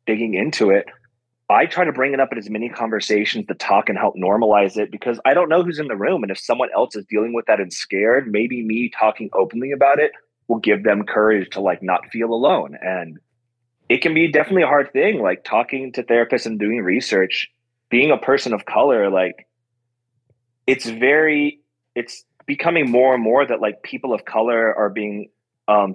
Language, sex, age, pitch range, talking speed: English, male, 30-49, 100-120 Hz, 205 wpm